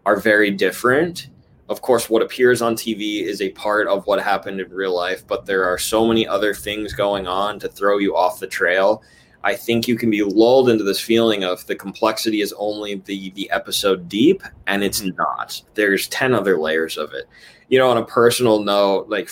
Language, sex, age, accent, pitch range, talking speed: English, male, 20-39, American, 95-120 Hz, 210 wpm